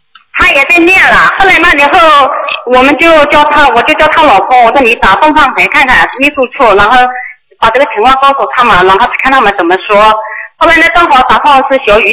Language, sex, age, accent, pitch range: Chinese, female, 30-49, native, 240-315 Hz